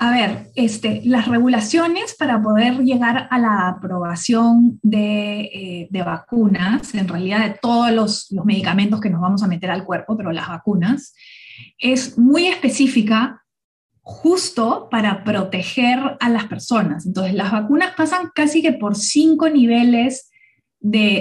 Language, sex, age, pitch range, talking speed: Spanish, female, 20-39, 205-255 Hz, 140 wpm